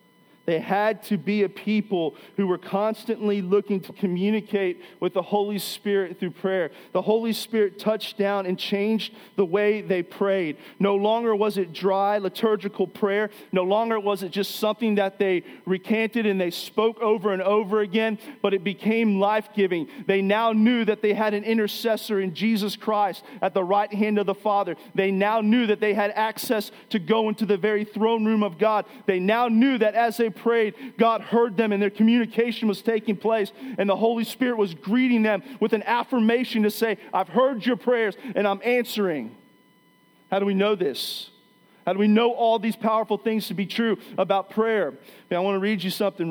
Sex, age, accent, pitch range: male, 40-59, American, 195-225 Hz